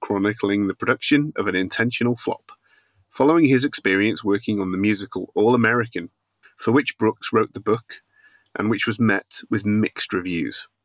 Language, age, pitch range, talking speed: English, 30-49, 100-125 Hz, 160 wpm